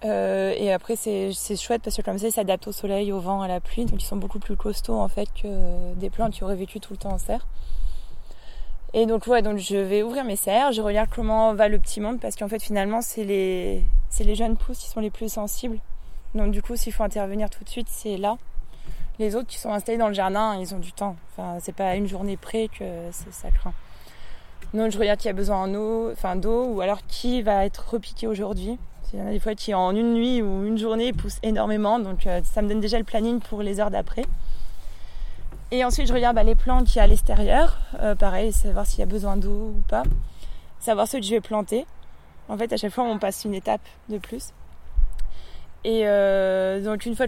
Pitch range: 190-225 Hz